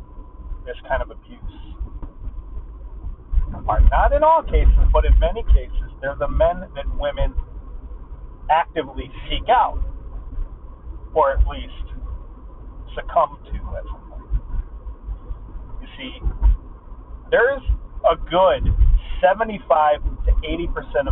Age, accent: 40-59, American